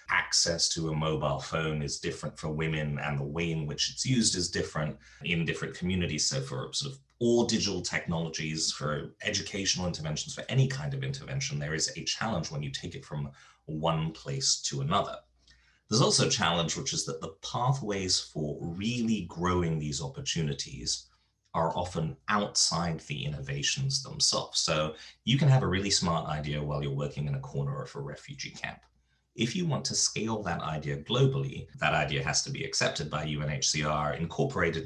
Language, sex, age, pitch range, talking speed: English, male, 30-49, 75-110 Hz, 180 wpm